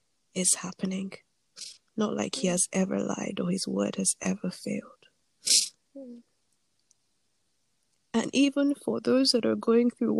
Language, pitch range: English, 225-255 Hz